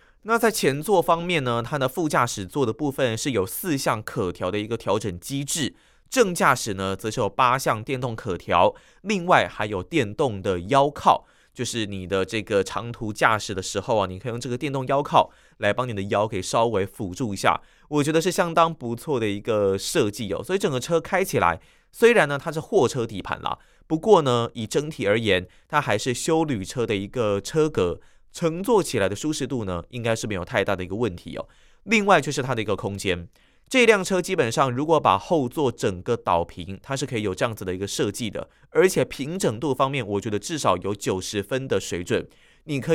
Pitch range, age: 100-160 Hz, 20-39